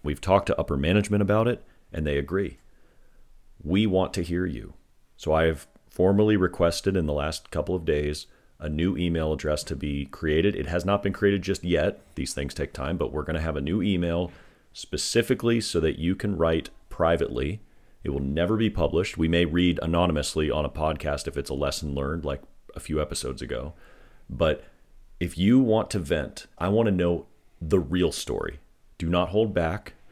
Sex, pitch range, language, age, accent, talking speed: male, 75-95 Hz, English, 40-59, American, 195 wpm